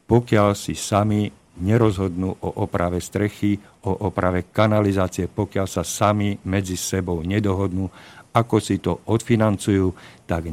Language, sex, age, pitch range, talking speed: Slovak, male, 50-69, 95-115 Hz, 120 wpm